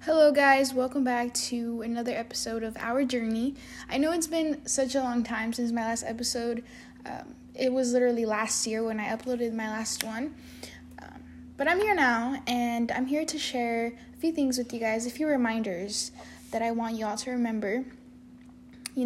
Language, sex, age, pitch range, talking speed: English, female, 10-29, 230-255 Hz, 190 wpm